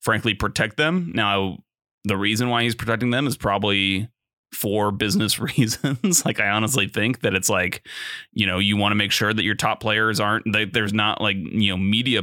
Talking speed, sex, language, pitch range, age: 200 wpm, male, English, 100-120 Hz, 30-49